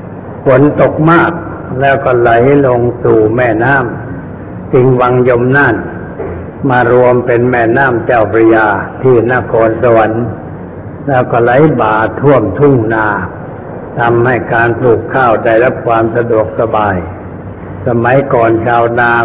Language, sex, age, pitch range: Thai, male, 60-79, 110-130 Hz